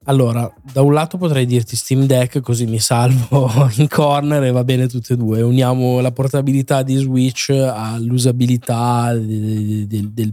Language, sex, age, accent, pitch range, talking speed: Italian, male, 10-29, native, 120-140 Hz, 155 wpm